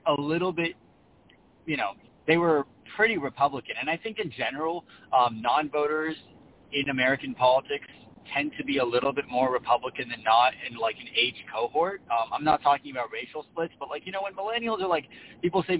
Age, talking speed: 30-49, 200 wpm